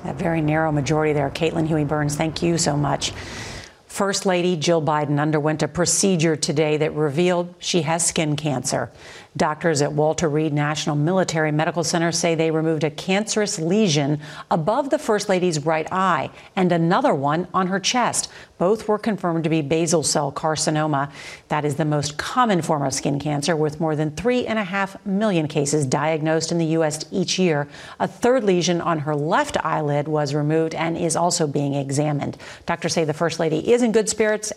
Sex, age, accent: female, 50-69, American